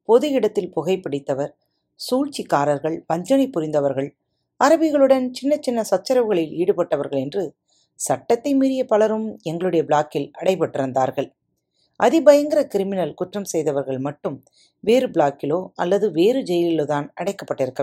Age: 40-59